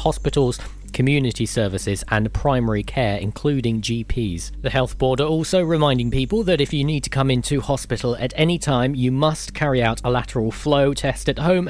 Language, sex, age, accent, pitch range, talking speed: English, male, 40-59, British, 110-145 Hz, 185 wpm